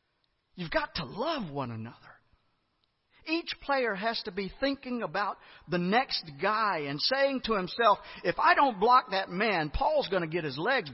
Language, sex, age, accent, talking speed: English, male, 50-69, American, 175 wpm